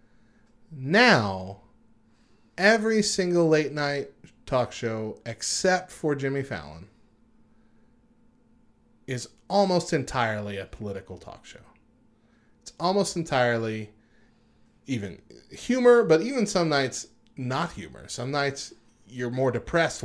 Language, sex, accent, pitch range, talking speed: English, male, American, 100-140 Hz, 100 wpm